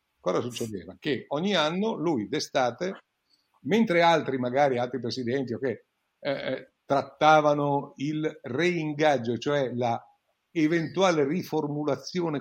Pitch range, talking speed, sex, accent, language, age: 120-165 Hz, 100 wpm, male, native, Italian, 50-69